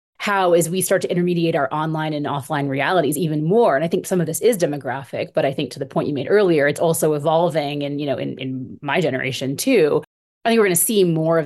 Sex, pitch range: female, 150-185 Hz